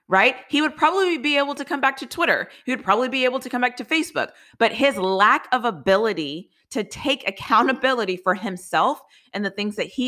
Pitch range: 190-250 Hz